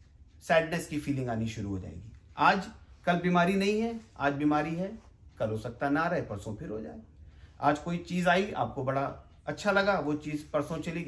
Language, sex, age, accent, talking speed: English, male, 40-59, Indian, 195 wpm